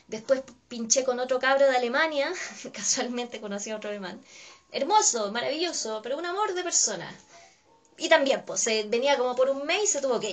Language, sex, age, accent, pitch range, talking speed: Spanish, female, 20-39, Argentinian, 205-275 Hz, 185 wpm